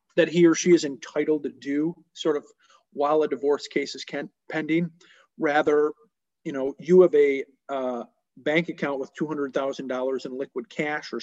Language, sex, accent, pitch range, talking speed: English, male, American, 140-185 Hz, 165 wpm